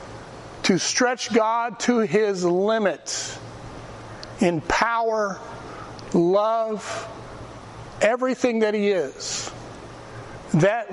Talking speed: 75 wpm